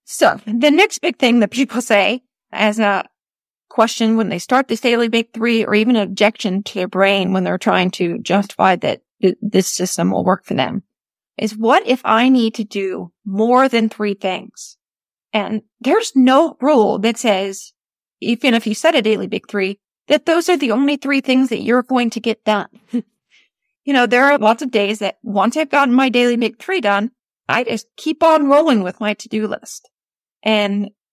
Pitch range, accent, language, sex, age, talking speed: 205-250 Hz, American, English, female, 30-49, 195 wpm